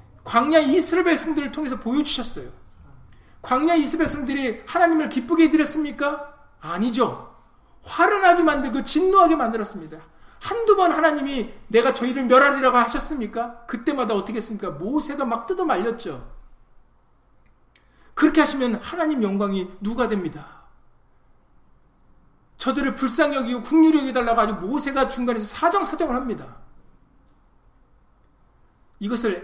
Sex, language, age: male, Korean, 40-59